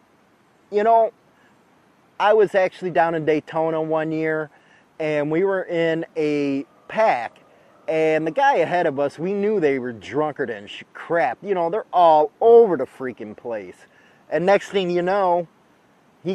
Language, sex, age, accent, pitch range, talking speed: English, male, 30-49, American, 150-180 Hz, 160 wpm